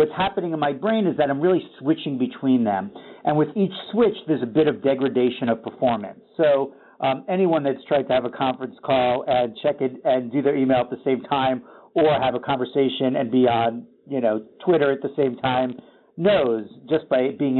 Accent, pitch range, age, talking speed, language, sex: American, 125-155 Hz, 50-69, 210 wpm, English, male